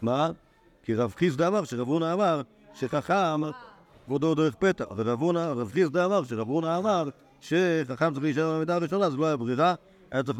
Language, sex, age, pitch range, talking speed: Hebrew, male, 50-69, 135-180 Hz, 180 wpm